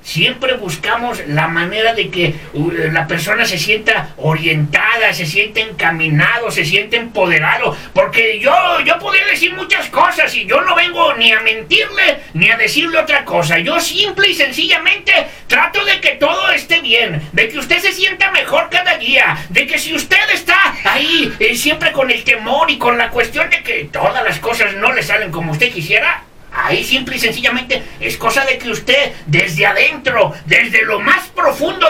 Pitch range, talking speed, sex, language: 205-310 Hz, 180 wpm, male, Spanish